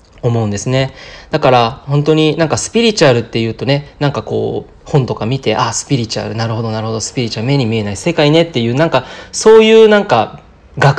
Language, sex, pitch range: Japanese, male, 115-155 Hz